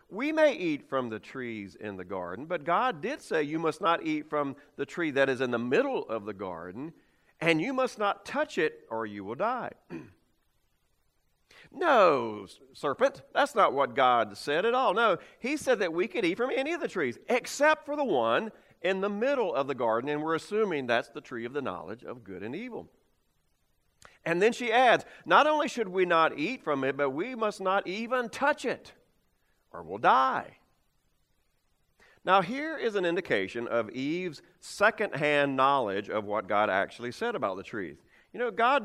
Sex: male